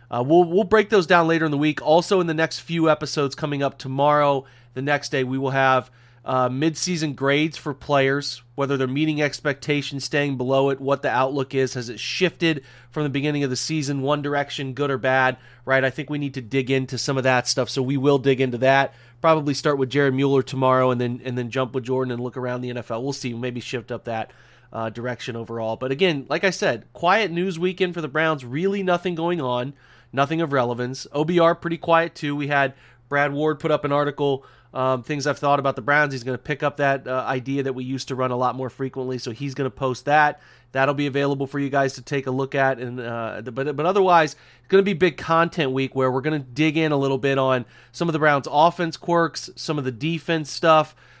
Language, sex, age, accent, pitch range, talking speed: English, male, 30-49, American, 130-155 Hz, 240 wpm